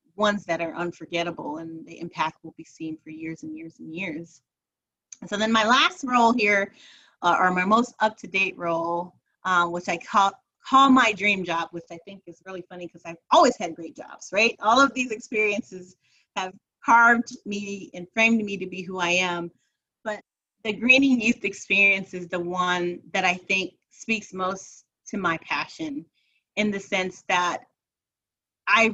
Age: 30-49